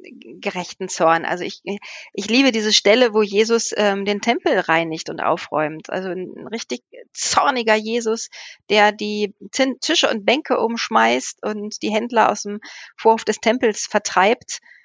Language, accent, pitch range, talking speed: German, German, 185-245 Hz, 145 wpm